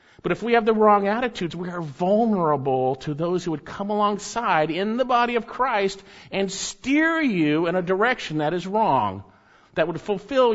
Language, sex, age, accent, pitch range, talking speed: English, male, 50-69, American, 140-215 Hz, 190 wpm